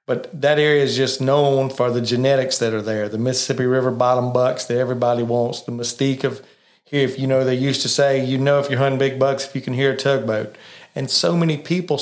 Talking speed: 240 wpm